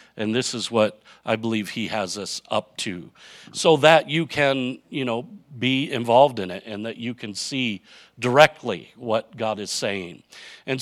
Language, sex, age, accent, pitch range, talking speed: English, male, 50-69, American, 110-135 Hz, 175 wpm